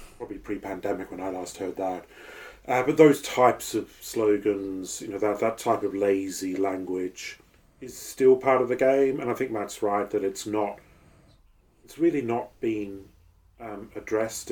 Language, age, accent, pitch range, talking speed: English, 30-49, British, 90-110 Hz, 170 wpm